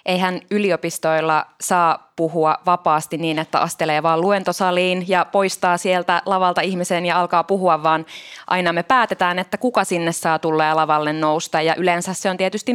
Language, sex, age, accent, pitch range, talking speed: Finnish, female, 20-39, native, 160-190 Hz, 165 wpm